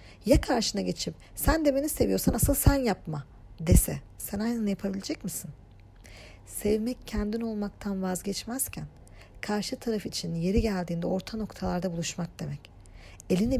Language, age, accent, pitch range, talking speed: Turkish, 40-59, native, 160-225 Hz, 130 wpm